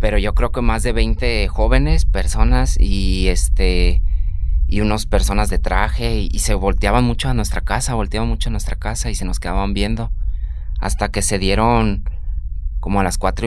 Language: Spanish